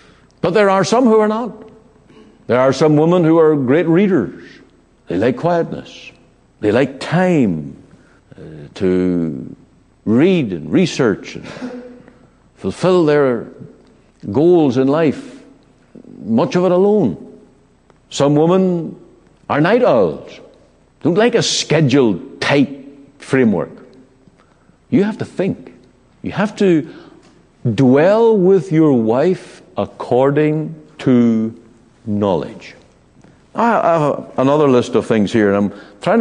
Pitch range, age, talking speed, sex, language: 140-215 Hz, 60-79, 115 wpm, male, English